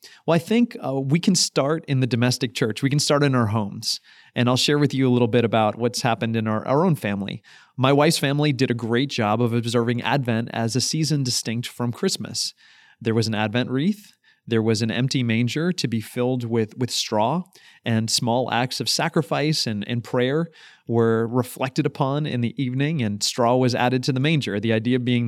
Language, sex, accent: English, male, American